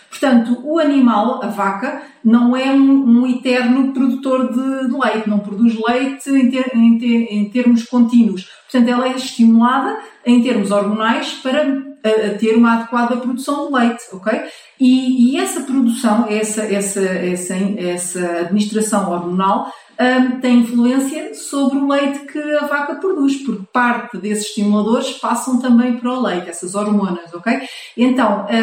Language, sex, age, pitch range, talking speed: Portuguese, female, 40-59, 220-275 Hz, 135 wpm